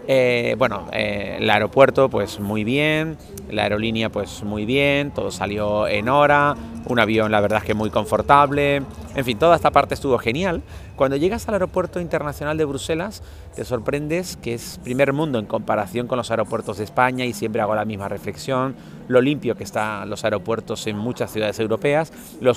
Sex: male